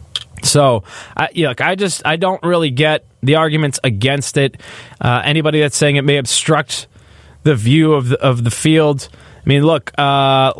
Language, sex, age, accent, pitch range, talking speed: English, male, 20-39, American, 120-160 Hz, 175 wpm